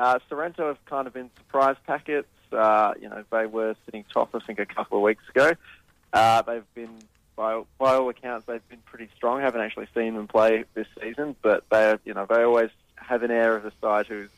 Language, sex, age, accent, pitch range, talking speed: English, male, 20-39, Australian, 105-125 Hz, 225 wpm